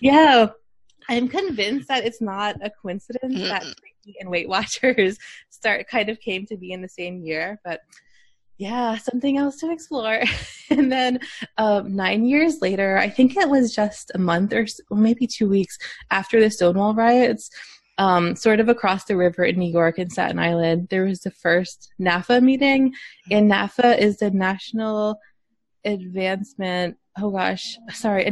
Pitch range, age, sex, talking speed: 185-235 Hz, 20-39, female, 165 wpm